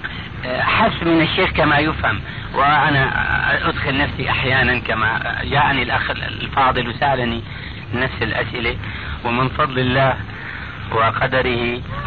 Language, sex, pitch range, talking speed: Arabic, male, 115-160 Hz, 100 wpm